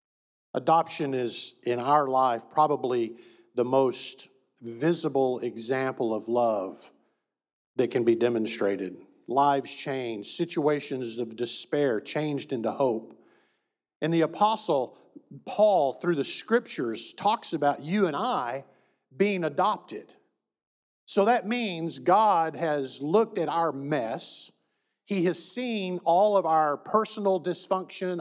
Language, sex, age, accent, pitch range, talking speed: English, male, 50-69, American, 135-190 Hz, 115 wpm